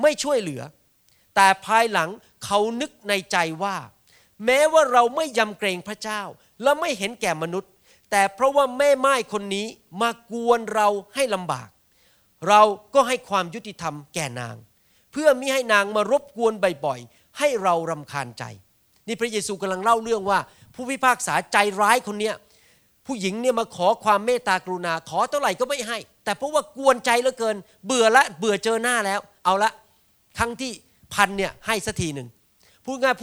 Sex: male